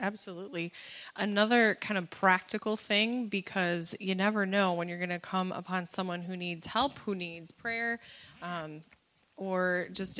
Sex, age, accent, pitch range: female, 20-39, American, 175-215 Hz